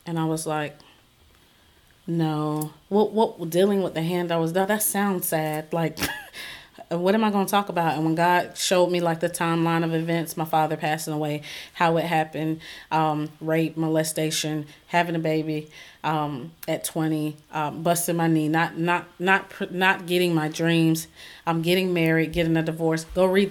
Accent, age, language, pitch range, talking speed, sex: American, 30-49, English, 160-180 Hz, 180 wpm, female